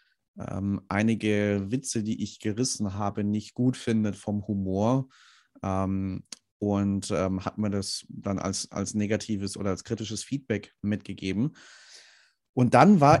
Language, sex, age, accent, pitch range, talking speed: German, male, 30-49, German, 105-130 Hz, 135 wpm